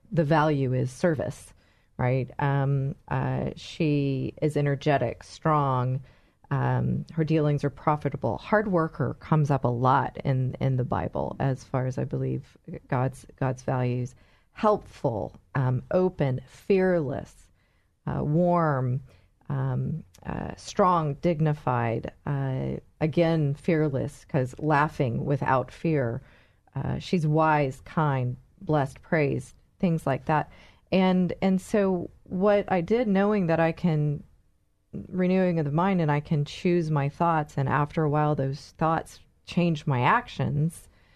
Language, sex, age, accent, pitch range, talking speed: English, female, 40-59, American, 130-170 Hz, 130 wpm